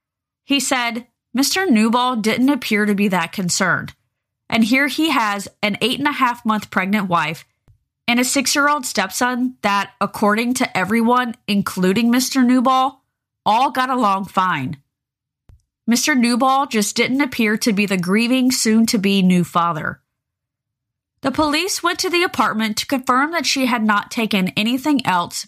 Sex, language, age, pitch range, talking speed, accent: female, English, 20-39, 185-250 Hz, 140 wpm, American